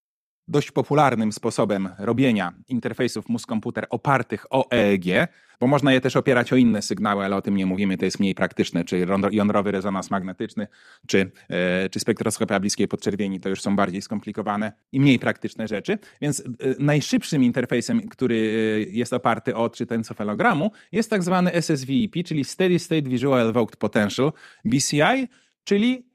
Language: Polish